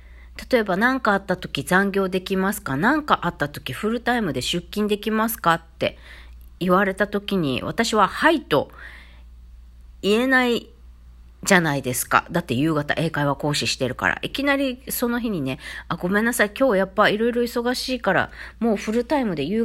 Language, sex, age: Japanese, female, 40-59